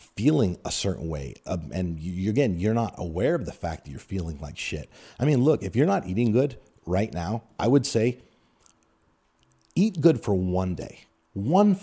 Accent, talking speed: American, 200 wpm